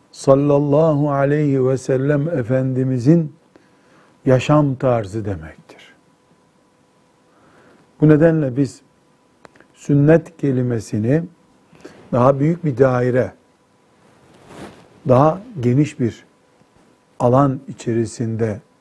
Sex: male